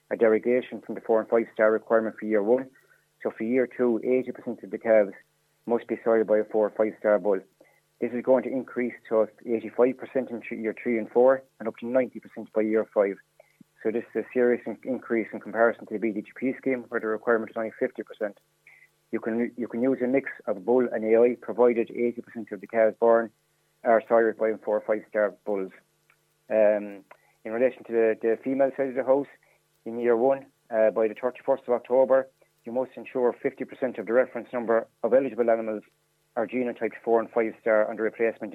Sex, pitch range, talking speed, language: male, 110-125 Hz, 200 wpm, English